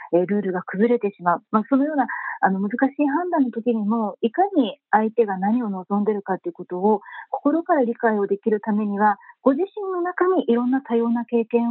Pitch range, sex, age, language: 205-270 Hz, female, 40-59, Japanese